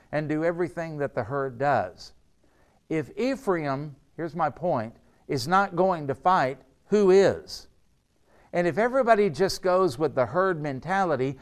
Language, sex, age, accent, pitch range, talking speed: English, male, 60-79, American, 140-190 Hz, 145 wpm